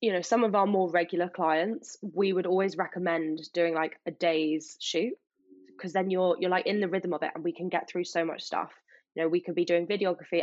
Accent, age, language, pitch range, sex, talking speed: British, 10-29, English, 165-185 Hz, female, 240 wpm